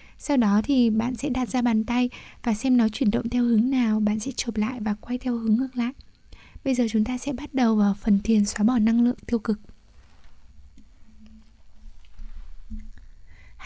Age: 20-39